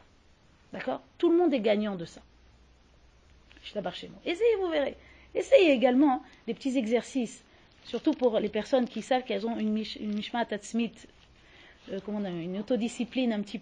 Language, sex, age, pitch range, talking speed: French, female, 40-59, 205-300 Hz, 180 wpm